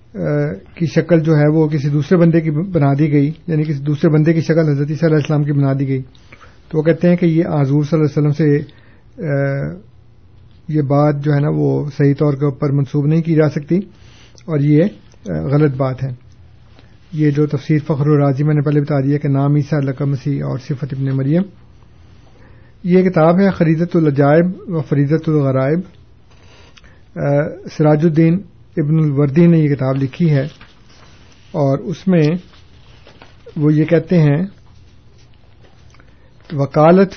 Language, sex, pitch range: Urdu, male, 135-165 Hz